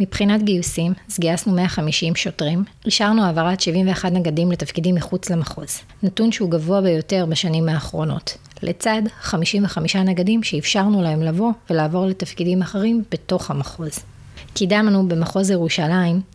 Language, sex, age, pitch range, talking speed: Hebrew, female, 30-49, 160-190 Hz, 120 wpm